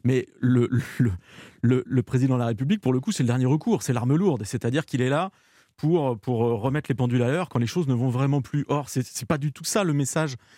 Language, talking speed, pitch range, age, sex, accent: French, 260 wpm, 125-175 Hz, 30-49, male, French